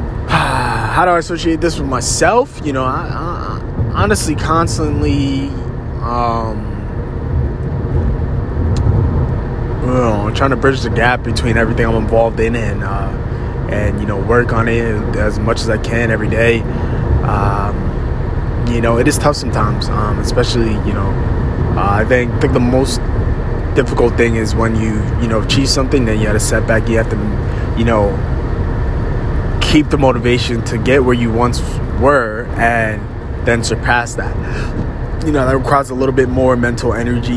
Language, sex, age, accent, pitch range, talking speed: English, male, 20-39, American, 105-120 Hz, 160 wpm